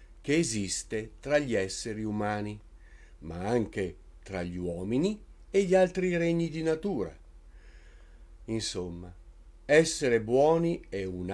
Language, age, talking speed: Italian, 50-69, 115 wpm